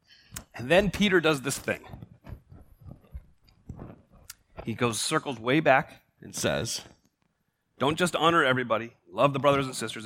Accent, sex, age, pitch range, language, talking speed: American, male, 30-49, 145-210 Hz, English, 130 wpm